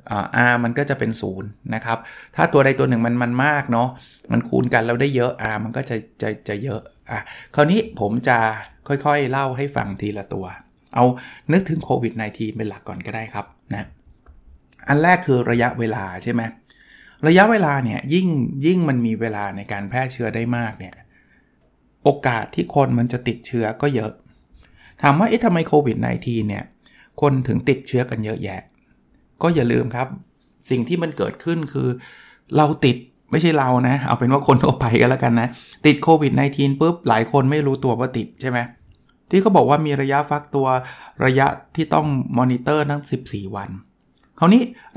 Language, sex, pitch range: Thai, male, 115-150 Hz